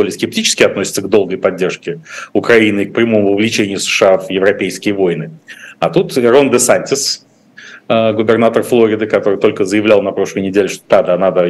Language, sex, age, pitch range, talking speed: Russian, male, 30-49, 95-115 Hz, 155 wpm